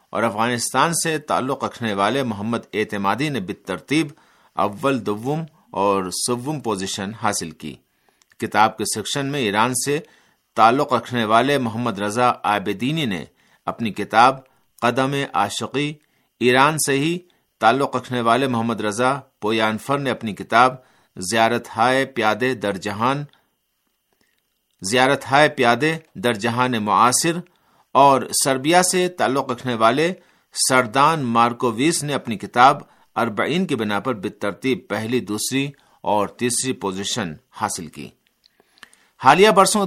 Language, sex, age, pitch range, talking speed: Urdu, male, 50-69, 105-140 Hz, 115 wpm